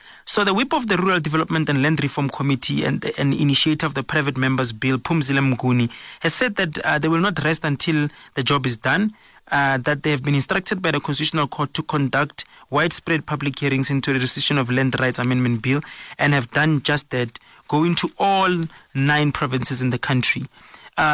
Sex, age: male, 30-49